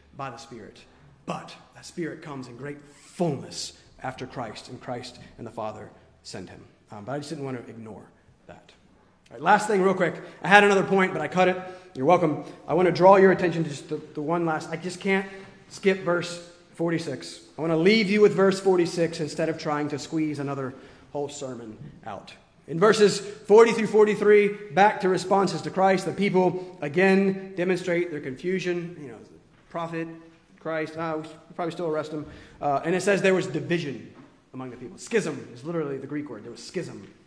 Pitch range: 150-195 Hz